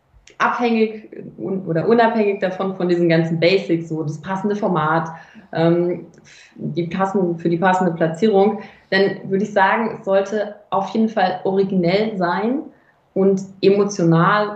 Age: 20-39